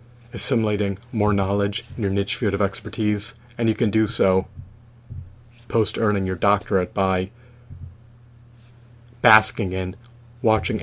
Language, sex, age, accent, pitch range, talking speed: English, male, 30-49, American, 100-120 Hz, 115 wpm